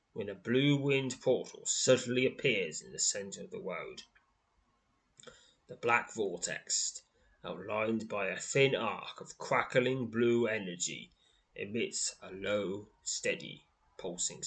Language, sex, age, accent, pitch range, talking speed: English, male, 20-39, British, 115-175 Hz, 125 wpm